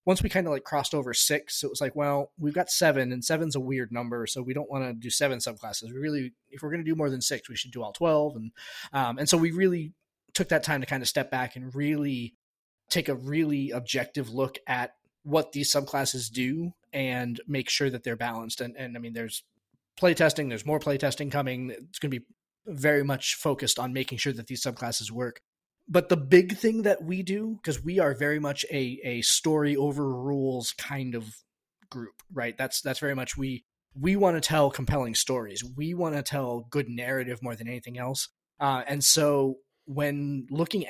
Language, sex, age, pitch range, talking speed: English, male, 20-39, 125-150 Hz, 215 wpm